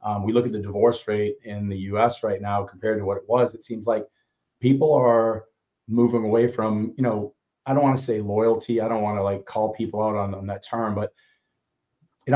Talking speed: 230 wpm